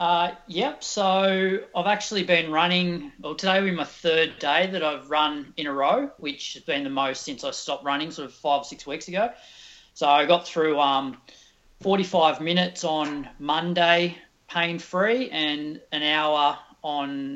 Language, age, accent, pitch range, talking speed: English, 30-49, Australian, 140-175 Hz, 180 wpm